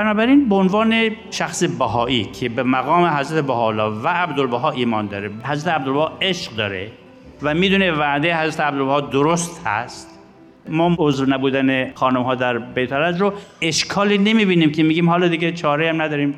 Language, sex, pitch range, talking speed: Persian, male, 135-200 Hz, 155 wpm